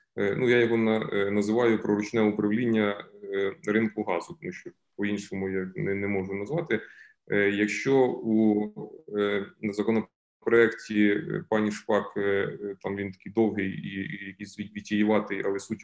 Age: 20-39